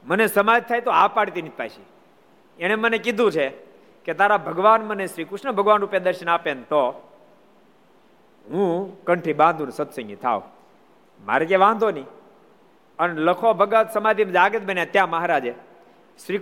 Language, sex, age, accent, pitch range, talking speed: Gujarati, male, 50-69, native, 135-195 Hz, 90 wpm